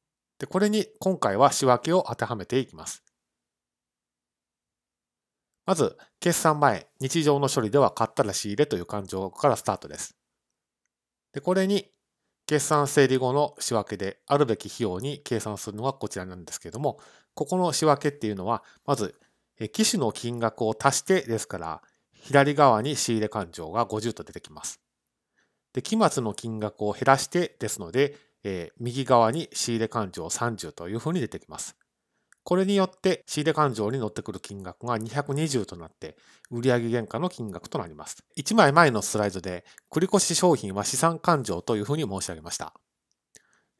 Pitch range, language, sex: 105-145 Hz, Japanese, male